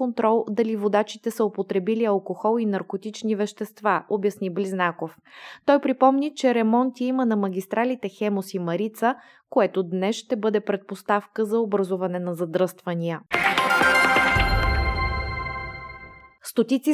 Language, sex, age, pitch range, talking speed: Bulgarian, female, 20-39, 200-230 Hz, 110 wpm